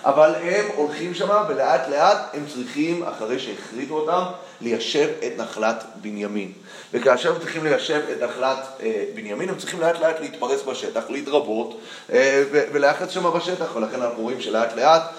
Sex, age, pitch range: male, 30-49, 120-180 Hz